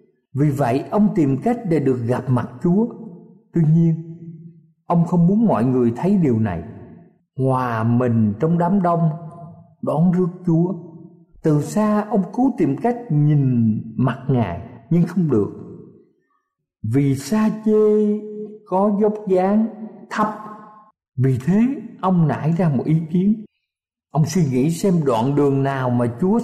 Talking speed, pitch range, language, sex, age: 145 wpm, 145-210 Hz, Vietnamese, male, 50-69